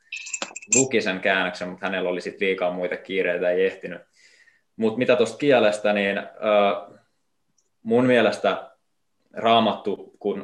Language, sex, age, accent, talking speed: Finnish, male, 20-39, native, 125 wpm